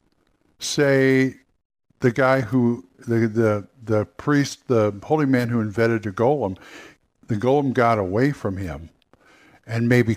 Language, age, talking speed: English, 60-79, 135 wpm